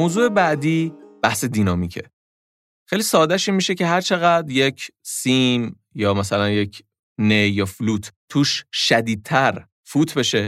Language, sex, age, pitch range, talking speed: Persian, male, 30-49, 105-140 Hz, 130 wpm